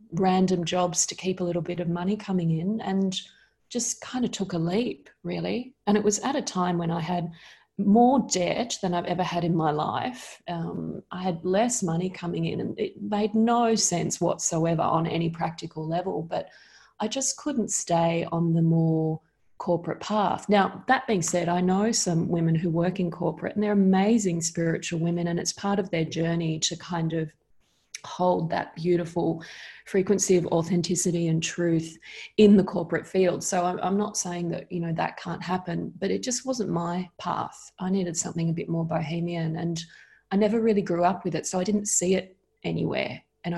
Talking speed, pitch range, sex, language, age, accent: 195 wpm, 170-195 Hz, female, English, 30-49, Australian